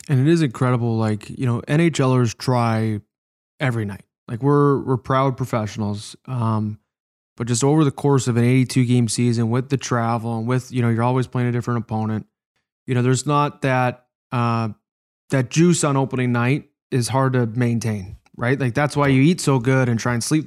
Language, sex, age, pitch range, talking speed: English, male, 20-39, 115-130 Hz, 195 wpm